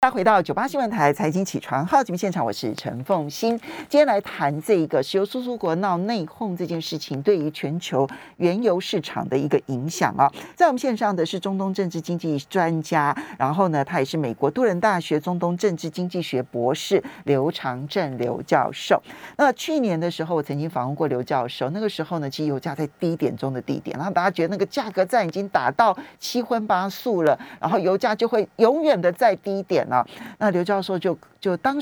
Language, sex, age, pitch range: Chinese, male, 40-59, 140-195 Hz